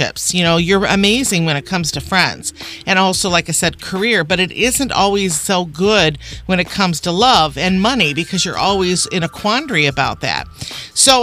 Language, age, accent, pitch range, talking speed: English, 50-69, American, 165-215 Hz, 200 wpm